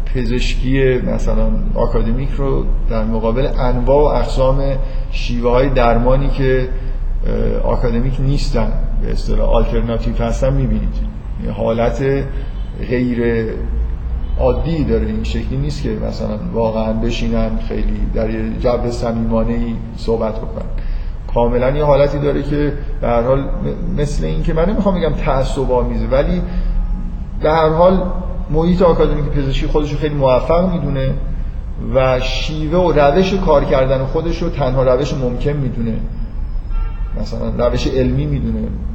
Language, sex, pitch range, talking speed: Persian, male, 115-145 Hz, 120 wpm